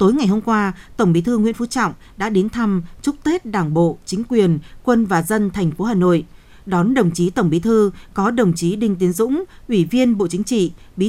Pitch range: 170-225 Hz